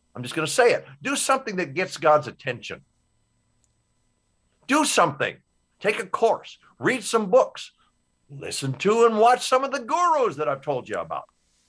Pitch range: 140-210 Hz